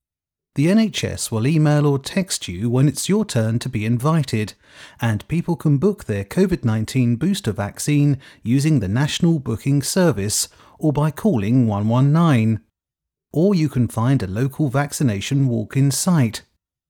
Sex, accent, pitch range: male, British, 110-155 Hz